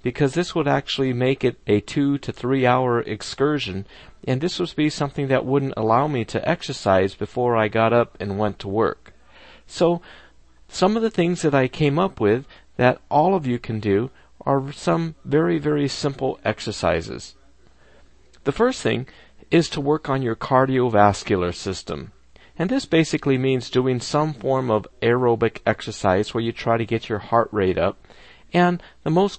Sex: male